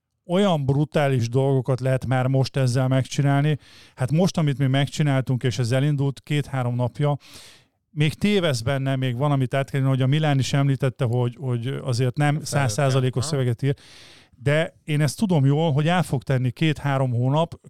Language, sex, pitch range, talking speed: Hungarian, male, 130-150 Hz, 165 wpm